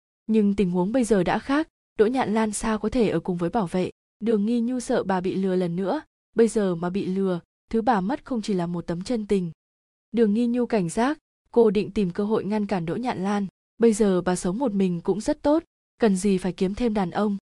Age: 20-39